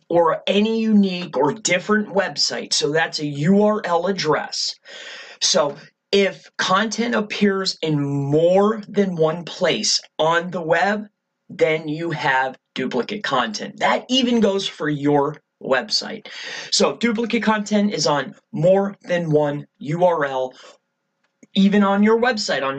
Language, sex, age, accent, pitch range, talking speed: English, male, 30-49, American, 160-215 Hz, 130 wpm